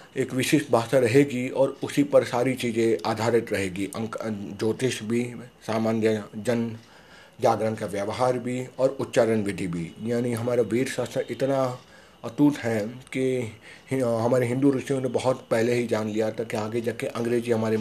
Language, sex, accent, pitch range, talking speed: Hindi, male, native, 110-130 Hz, 160 wpm